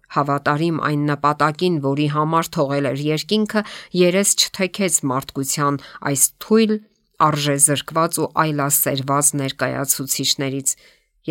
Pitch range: 140-165 Hz